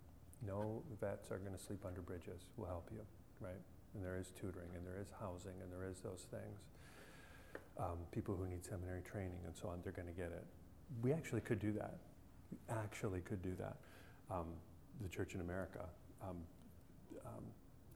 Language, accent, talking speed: English, American, 185 wpm